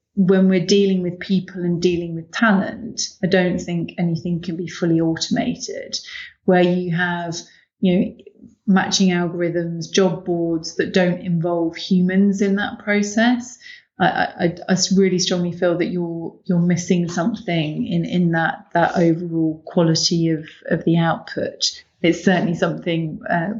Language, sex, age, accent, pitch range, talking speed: English, female, 30-49, British, 165-185 Hz, 145 wpm